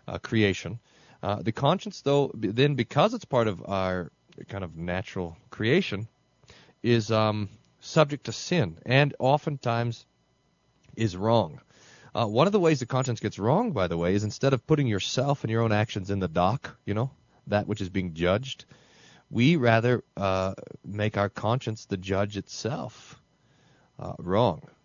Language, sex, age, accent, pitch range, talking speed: English, male, 30-49, American, 100-135 Hz, 165 wpm